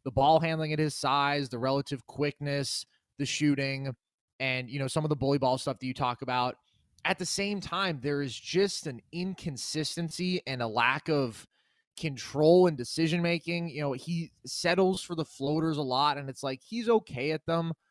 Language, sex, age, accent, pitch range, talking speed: English, male, 20-39, American, 140-180 Hz, 190 wpm